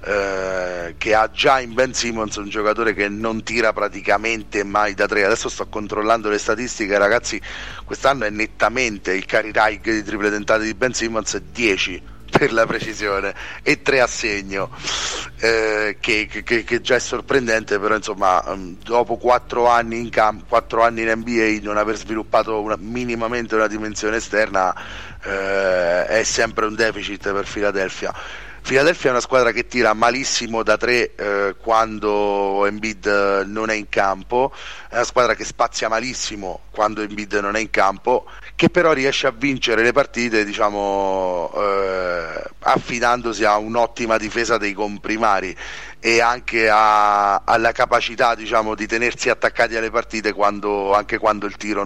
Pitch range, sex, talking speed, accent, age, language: 105-115 Hz, male, 155 wpm, native, 30-49, Italian